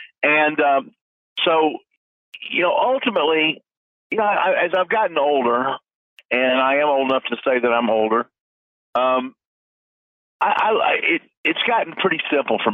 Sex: male